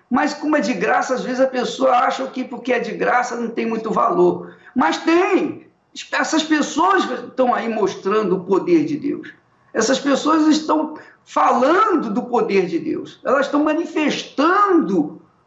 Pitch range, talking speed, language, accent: 205-300 Hz, 160 wpm, Portuguese, Brazilian